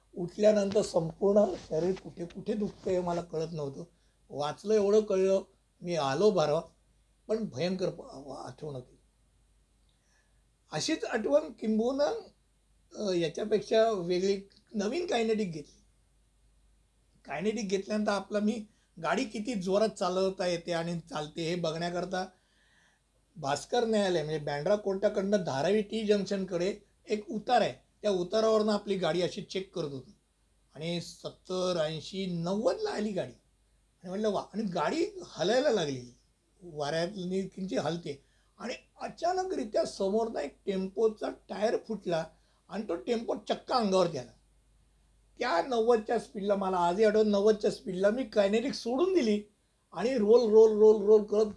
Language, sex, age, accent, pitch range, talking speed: Hindi, male, 60-79, native, 175-215 Hz, 105 wpm